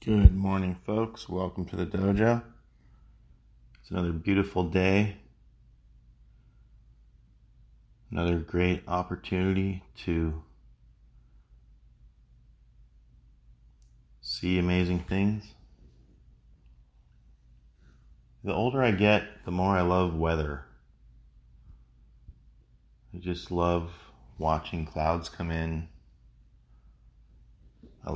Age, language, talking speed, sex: 30-49, English, 75 wpm, male